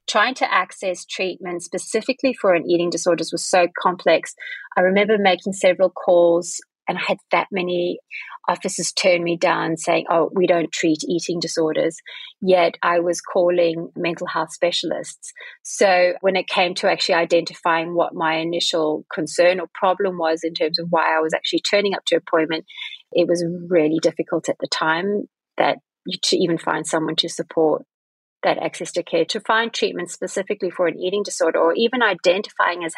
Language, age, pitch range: English, 30-49, 170-195 Hz